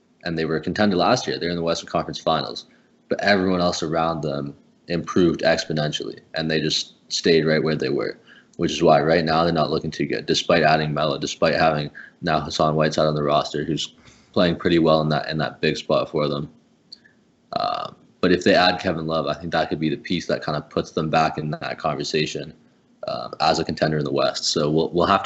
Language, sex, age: English, male, 20-39